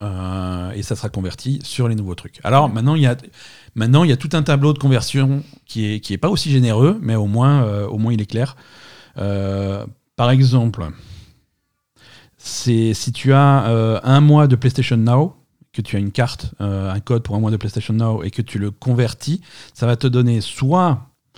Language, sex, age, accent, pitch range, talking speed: French, male, 40-59, French, 100-130 Hz, 200 wpm